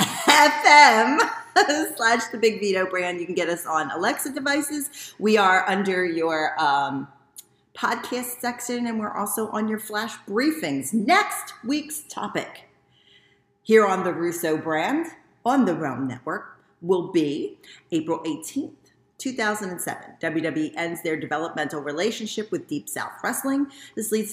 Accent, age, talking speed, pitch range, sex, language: American, 40-59, 135 wpm, 165-255 Hz, female, English